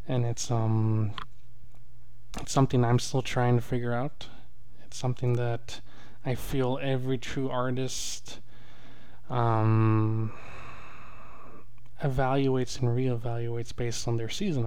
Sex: male